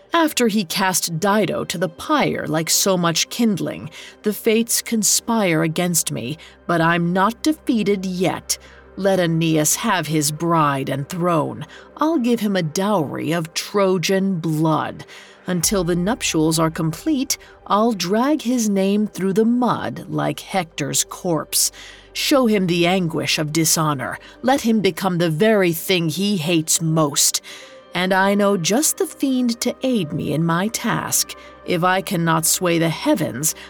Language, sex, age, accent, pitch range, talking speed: English, female, 40-59, American, 160-220 Hz, 150 wpm